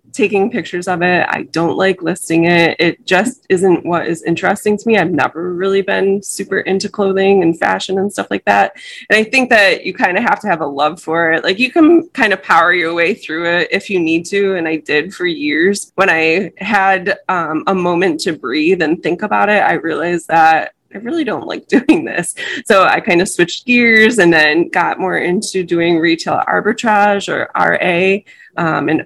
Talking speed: 210 wpm